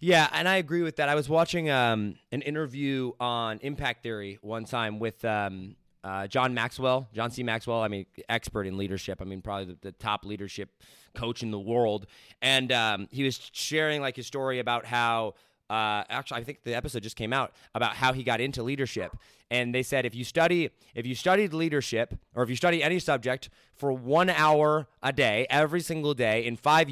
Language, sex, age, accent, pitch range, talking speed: English, male, 20-39, American, 115-150 Hz, 205 wpm